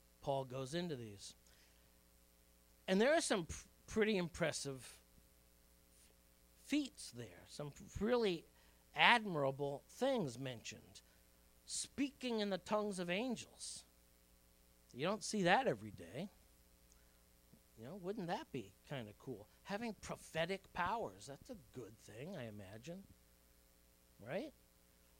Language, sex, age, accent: English, male, 50-69, American